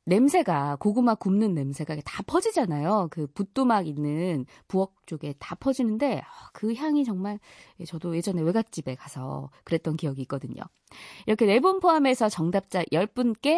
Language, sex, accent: Korean, female, native